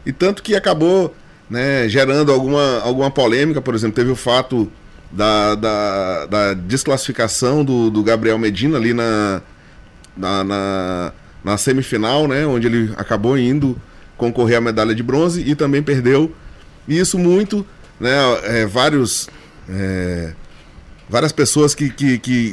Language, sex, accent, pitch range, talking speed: Portuguese, male, Brazilian, 120-155 Hz, 140 wpm